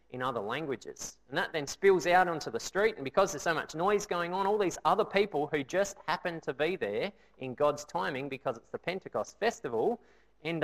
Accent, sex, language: Australian, male, English